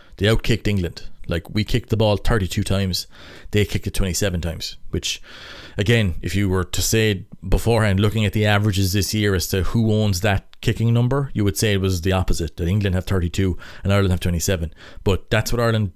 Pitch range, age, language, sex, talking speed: 90-110 Hz, 30-49, English, male, 210 wpm